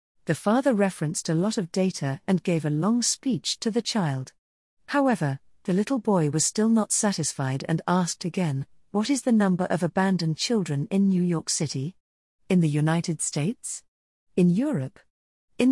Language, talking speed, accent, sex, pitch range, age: English, 170 wpm, British, female, 155-210 Hz, 40-59